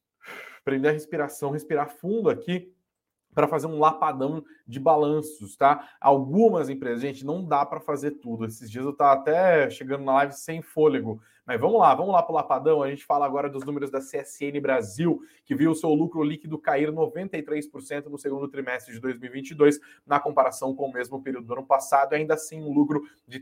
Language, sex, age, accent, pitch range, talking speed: Portuguese, male, 20-39, Brazilian, 130-150 Hz, 190 wpm